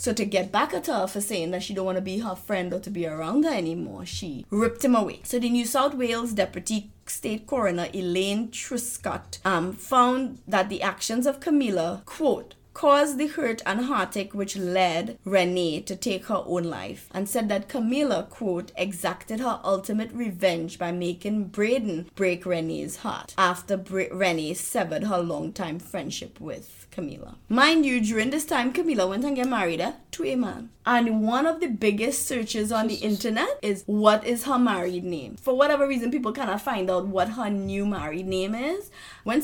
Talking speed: 185 wpm